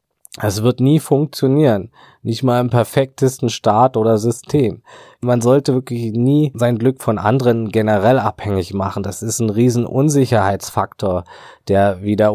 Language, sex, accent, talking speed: German, male, German, 140 wpm